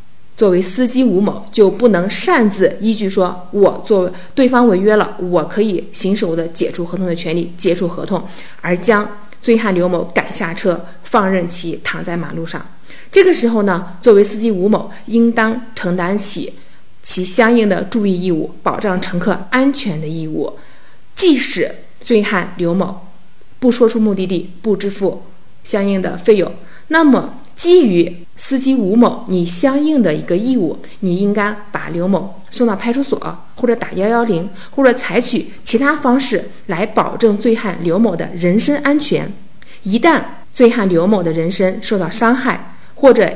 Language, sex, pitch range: Chinese, female, 180-230 Hz